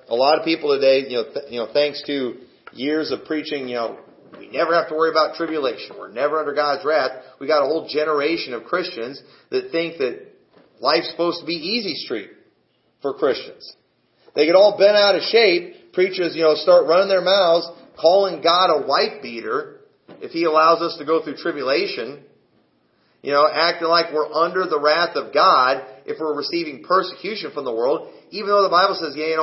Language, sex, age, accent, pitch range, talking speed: English, male, 40-59, American, 150-200 Hz, 200 wpm